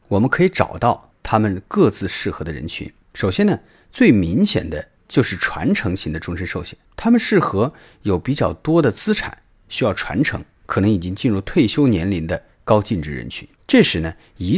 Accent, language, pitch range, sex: native, Chinese, 90-135 Hz, male